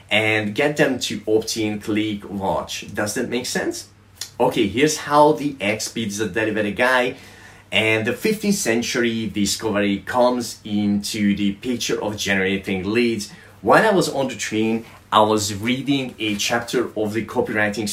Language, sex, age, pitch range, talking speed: English, male, 30-49, 100-125 Hz, 160 wpm